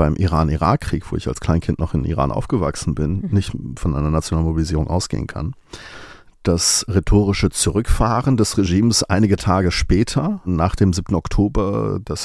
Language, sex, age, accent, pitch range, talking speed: German, male, 40-59, German, 85-100 Hz, 150 wpm